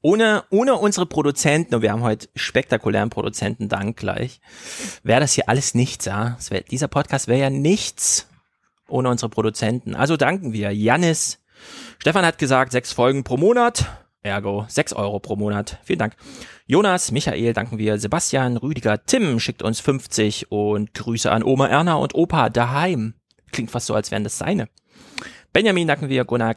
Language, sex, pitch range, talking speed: German, male, 110-150 Hz, 165 wpm